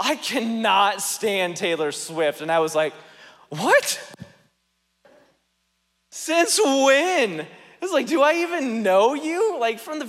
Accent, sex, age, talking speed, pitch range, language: American, male, 30-49, 135 wpm, 160-240 Hz, English